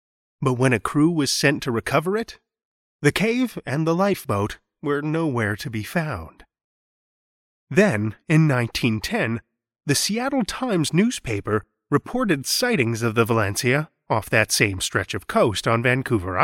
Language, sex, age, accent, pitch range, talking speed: English, male, 30-49, American, 110-170 Hz, 140 wpm